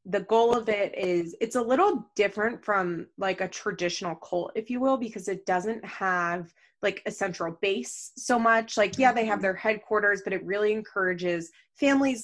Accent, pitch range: American, 180-220 Hz